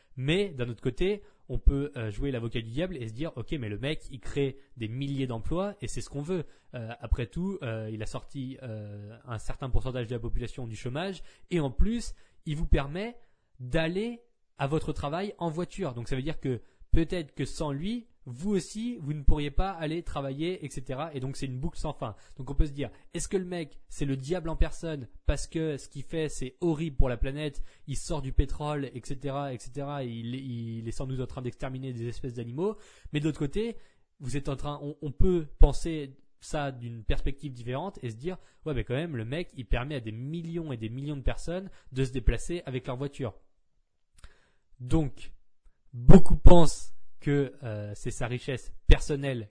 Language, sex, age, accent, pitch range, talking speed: French, male, 20-39, French, 120-160 Hz, 210 wpm